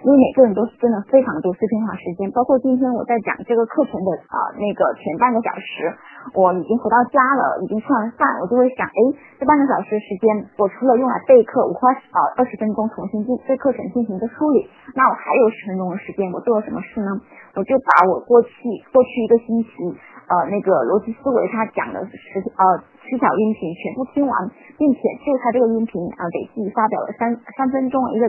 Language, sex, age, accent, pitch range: Chinese, female, 20-39, native, 205-265 Hz